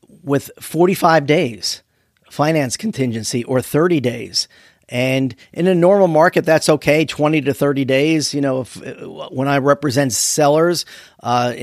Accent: American